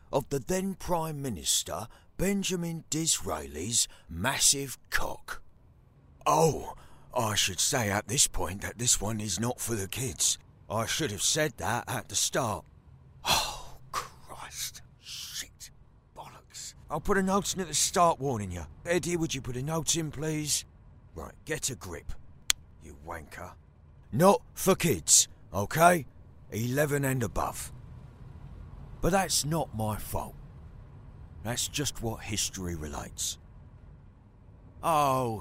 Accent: British